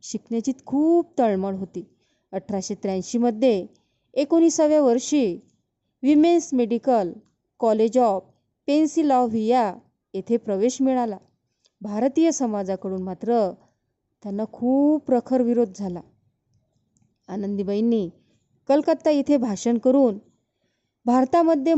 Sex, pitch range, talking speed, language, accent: female, 205-265 Hz, 85 wpm, Marathi, native